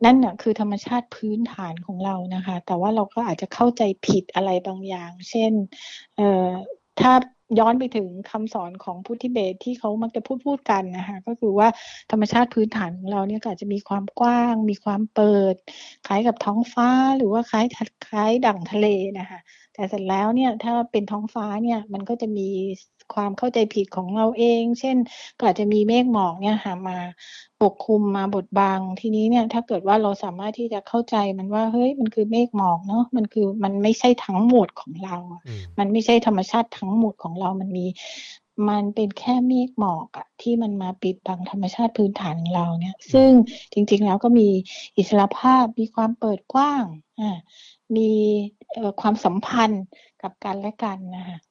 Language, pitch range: English, 195-230 Hz